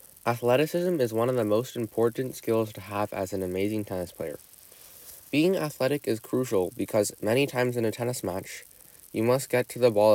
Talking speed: 190 wpm